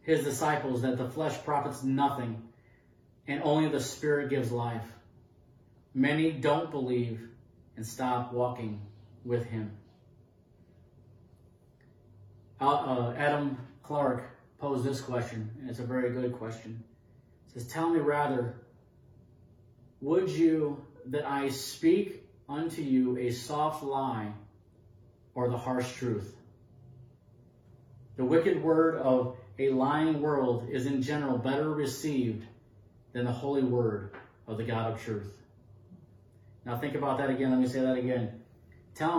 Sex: male